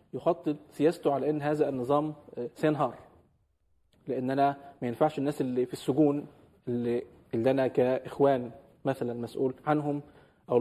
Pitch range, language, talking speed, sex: 135-155 Hz, Arabic, 125 wpm, male